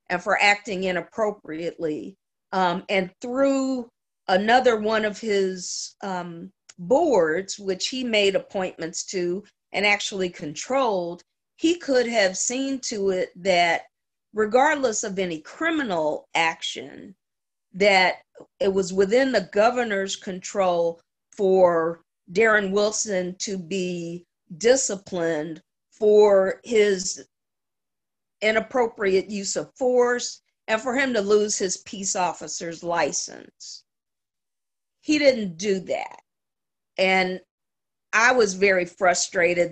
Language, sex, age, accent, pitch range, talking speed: English, female, 50-69, American, 180-225 Hz, 105 wpm